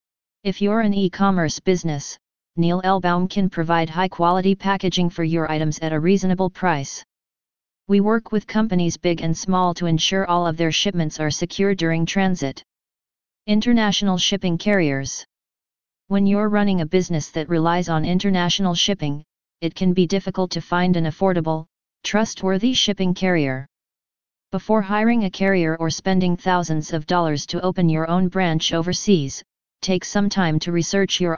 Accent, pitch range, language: American, 165-195 Hz, English